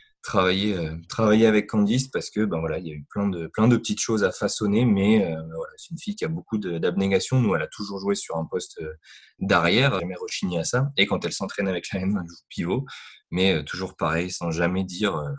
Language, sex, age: French, male, 20-39